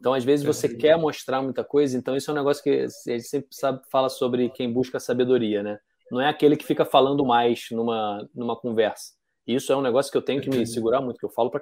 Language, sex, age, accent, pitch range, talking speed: Portuguese, male, 20-39, Brazilian, 120-155 Hz, 255 wpm